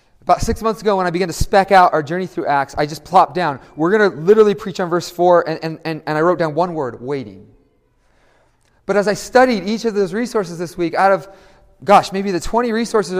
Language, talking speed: English, 240 wpm